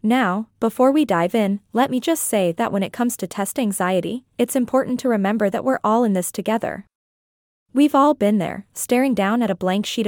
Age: 20-39